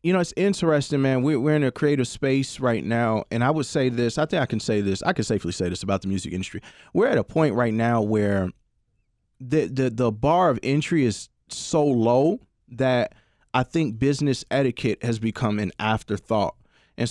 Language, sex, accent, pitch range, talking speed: English, male, American, 110-140 Hz, 210 wpm